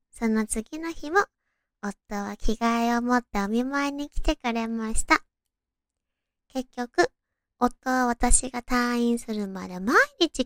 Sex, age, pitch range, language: male, 20-39, 210-260 Hz, Japanese